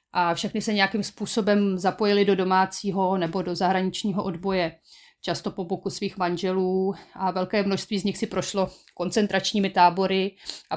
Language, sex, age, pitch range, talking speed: Slovak, female, 30-49, 175-195 Hz, 150 wpm